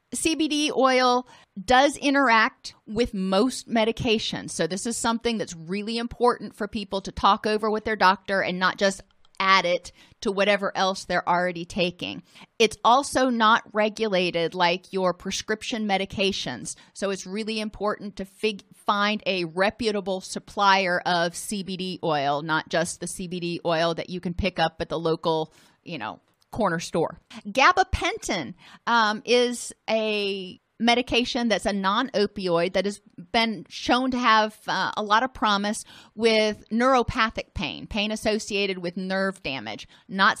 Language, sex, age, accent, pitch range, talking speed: English, female, 30-49, American, 185-230 Hz, 145 wpm